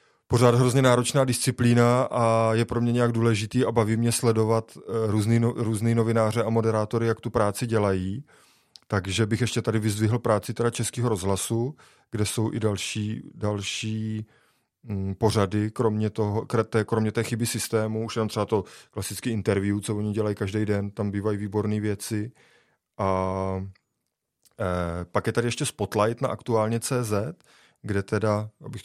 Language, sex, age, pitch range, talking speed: Czech, male, 20-39, 105-120 Hz, 145 wpm